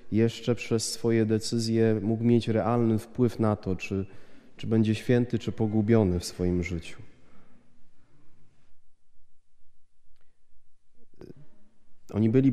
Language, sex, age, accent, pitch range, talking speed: Polish, male, 30-49, native, 100-120 Hz, 100 wpm